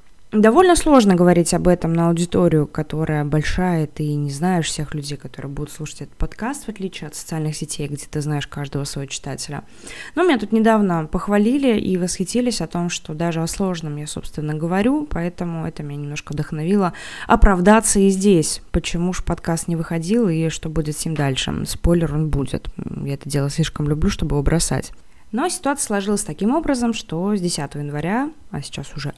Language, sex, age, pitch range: Russian, female, 20-39, 155-210 Hz